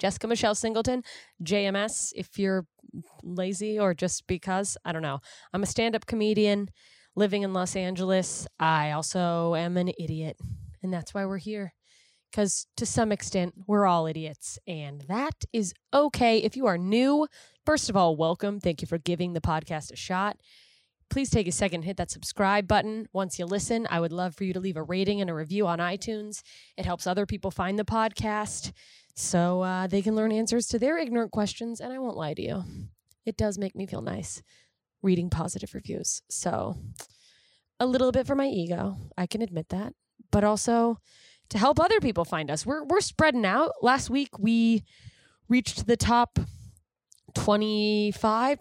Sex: female